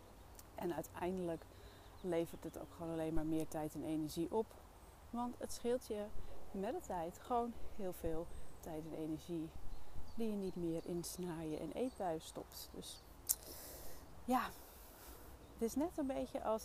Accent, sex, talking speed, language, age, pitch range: Dutch, female, 155 wpm, Dutch, 30-49, 160-195 Hz